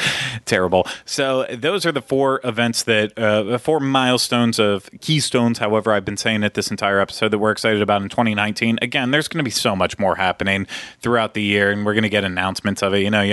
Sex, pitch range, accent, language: male, 100-120 Hz, American, English